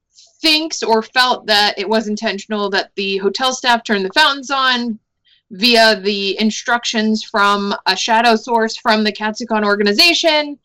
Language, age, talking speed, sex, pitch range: English, 20-39, 145 wpm, female, 205-245 Hz